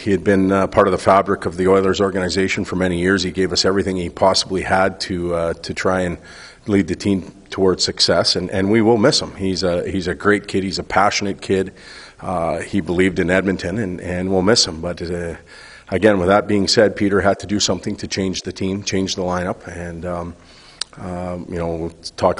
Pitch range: 90-100 Hz